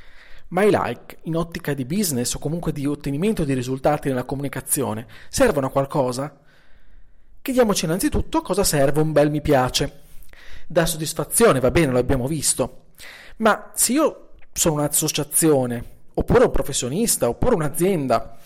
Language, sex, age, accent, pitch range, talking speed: Italian, male, 40-59, native, 135-195 Hz, 140 wpm